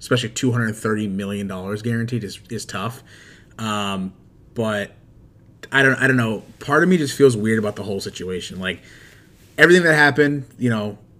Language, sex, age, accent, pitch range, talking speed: English, male, 30-49, American, 105-125 Hz, 165 wpm